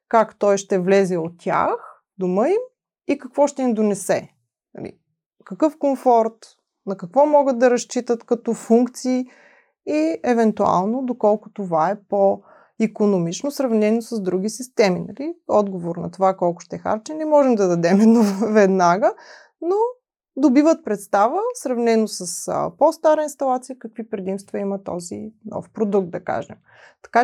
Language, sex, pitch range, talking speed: Bulgarian, female, 195-270 Hz, 135 wpm